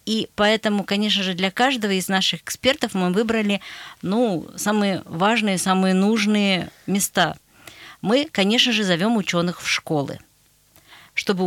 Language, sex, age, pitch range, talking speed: Russian, female, 40-59, 170-220 Hz, 130 wpm